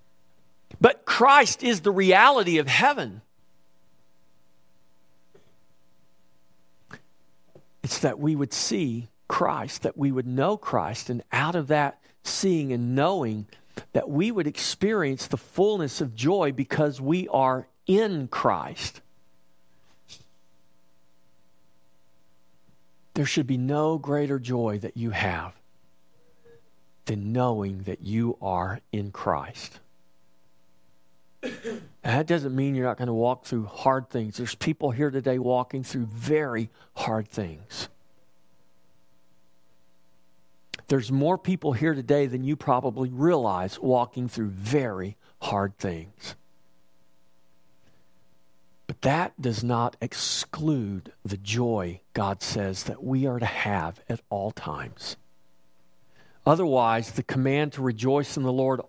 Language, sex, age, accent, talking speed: English, male, 50-69, American, 115 wpm